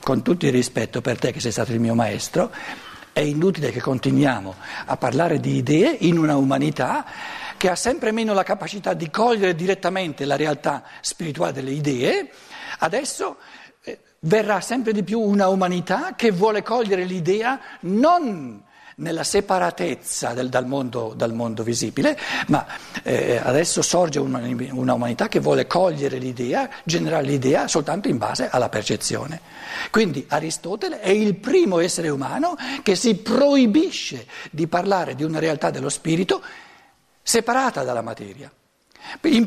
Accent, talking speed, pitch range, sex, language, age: native, 145 wpm, 150-245 Hz, male, Italian, 60-79